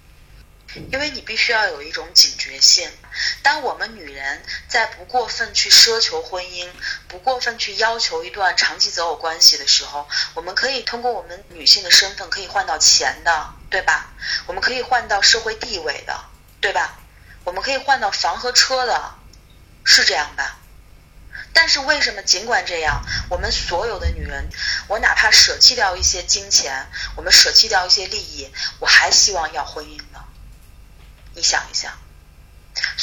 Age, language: 20-39, Chinese